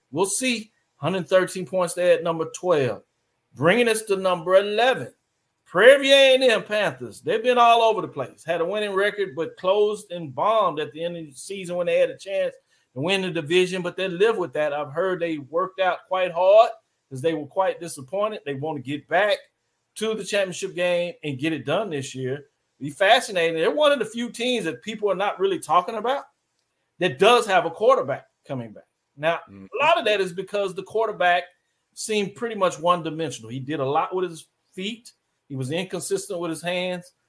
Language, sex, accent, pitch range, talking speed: English, male, American, 160-210 Hz, 205 wpm